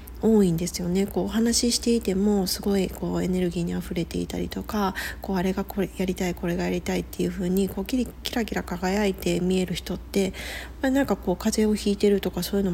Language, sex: Japanese, female